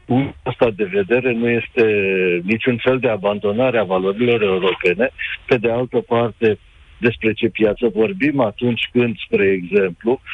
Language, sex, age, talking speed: Romanian, male, 50-69, 145 wpm